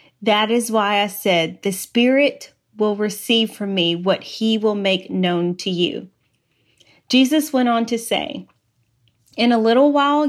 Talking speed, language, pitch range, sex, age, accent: 155 wpm, English, 185-245 Hz, female, 30-49, American